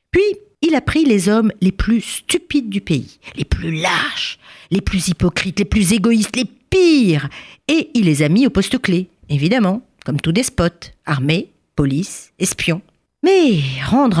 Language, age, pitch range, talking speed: French, 50-69, 155-250 Hz, 165 wpm